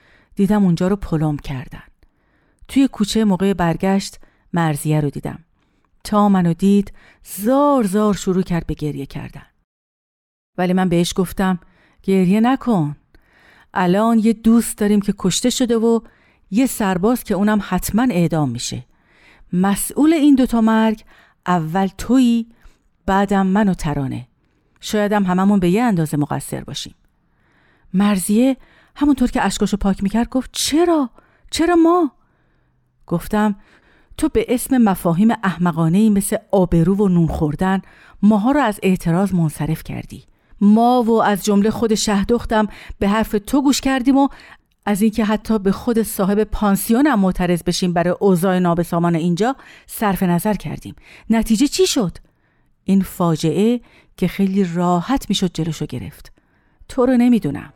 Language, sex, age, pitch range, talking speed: Persian, female, 40-59, 175-225 Hz, 135 wpm